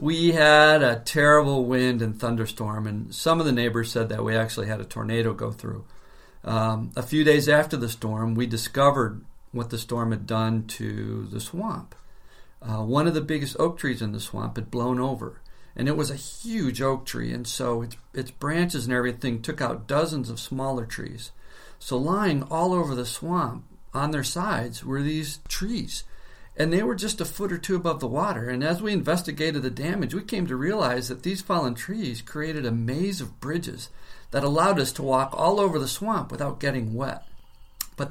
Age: 50-69